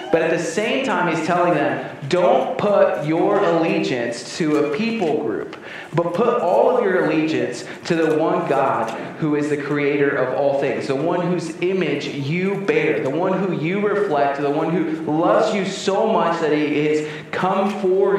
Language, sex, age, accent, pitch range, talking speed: English, male, 30-49, American, 155-195 Hz, 185 wpm